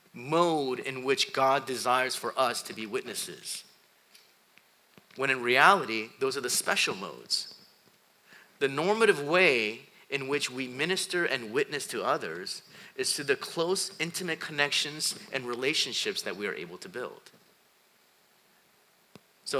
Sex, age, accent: male, 30-49, American